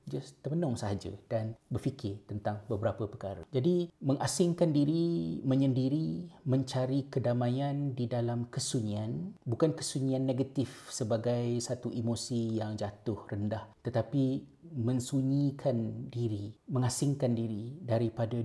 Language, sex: Malay, male